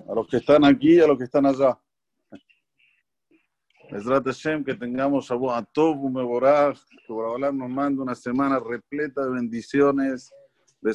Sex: male